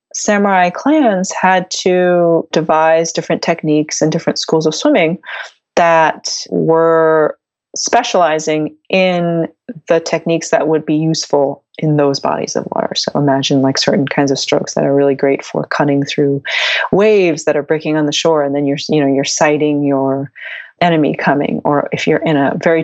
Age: 30-49